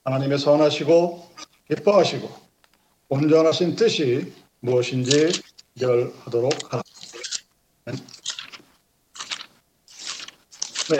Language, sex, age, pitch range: Korean, male, 50-69, 155-190 Hz